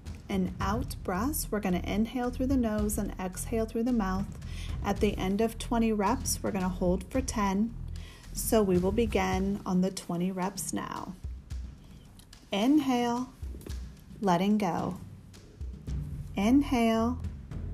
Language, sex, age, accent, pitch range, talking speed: English, female, 30-49, American, 170-235 Hz, 135 wpm